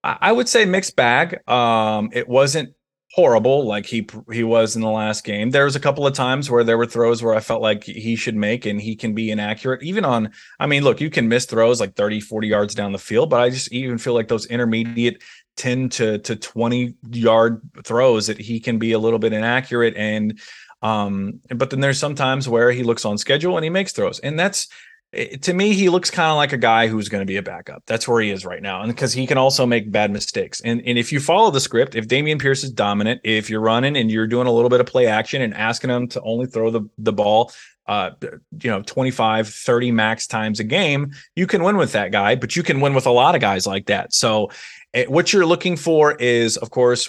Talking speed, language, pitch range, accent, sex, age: 245 wpm, English, 110-135 Hz, American, male, 30-49